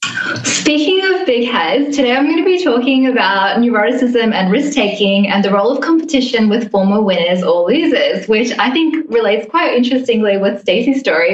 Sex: female